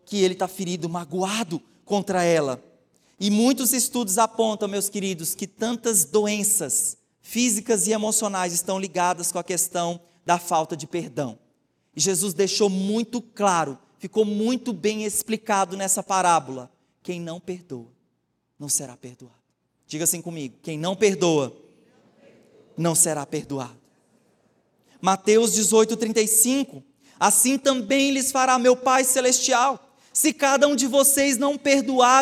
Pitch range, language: 190-280 Hz, Portuguese